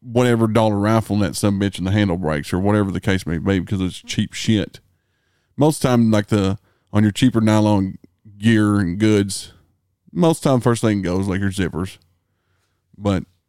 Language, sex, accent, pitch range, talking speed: English, male, American, 95-115 Hz, 180 wpm